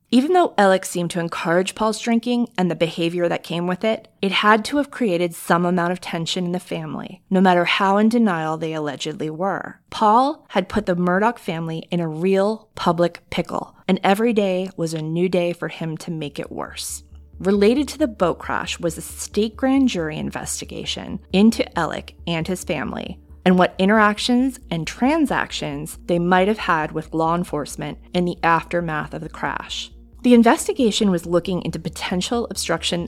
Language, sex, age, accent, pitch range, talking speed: English, female, 20-39, American, 165-220 Hz, 180 wpm